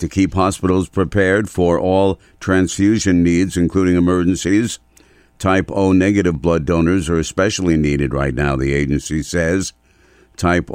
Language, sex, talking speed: English, male, 135 wpm